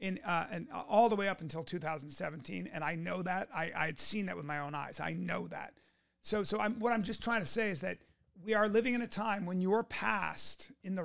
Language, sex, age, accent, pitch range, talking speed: English, male, 40-59, American, 165-215 Hz, 255 wpm